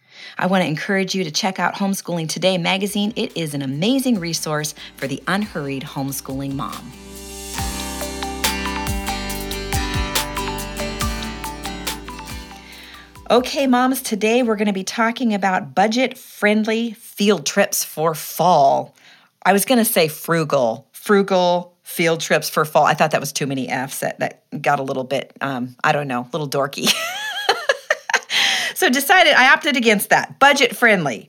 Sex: female